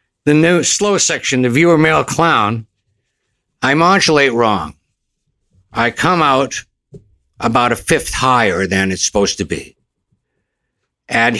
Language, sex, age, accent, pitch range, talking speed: English, male, 60-79, American, 135-225 Hz, 125 wpm